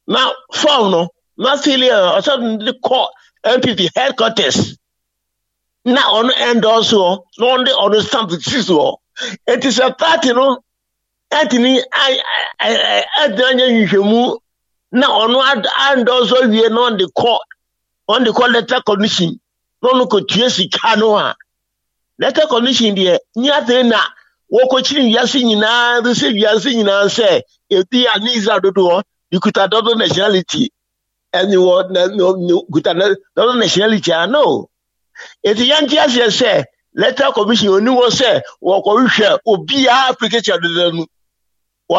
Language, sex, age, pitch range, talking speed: English, male, 50-69, 200-260 Hz, 125 wpm